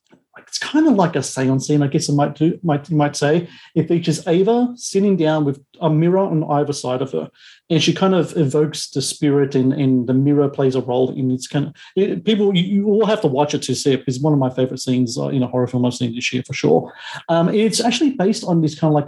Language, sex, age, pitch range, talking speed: English, male, 40-59, 135-165 Hz, 260 wpm